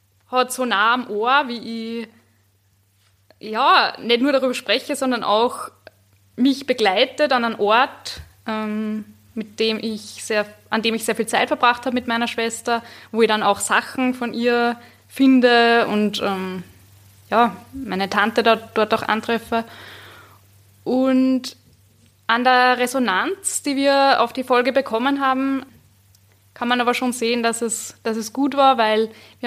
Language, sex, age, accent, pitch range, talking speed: German, female, 10-29, German, 205-250 Hz, 155 wpm